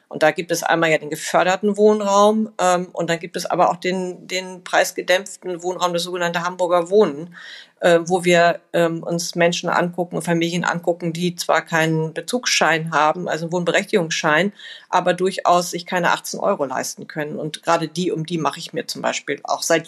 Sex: female